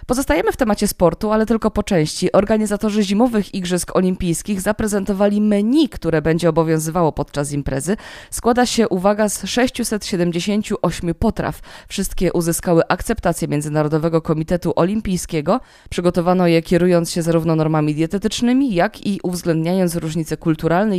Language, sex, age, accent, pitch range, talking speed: Polish, female, 20-39, native, 160-200 Hz, 125 wpm